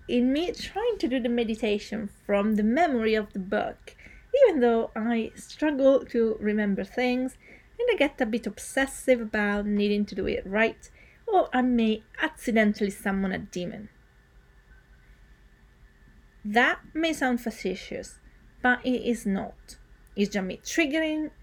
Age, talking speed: 30-49, 145 wpm